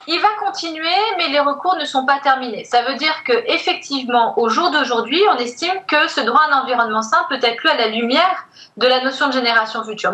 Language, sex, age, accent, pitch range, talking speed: French, female, 40-59, French, 230-360 Hz, 230 wpm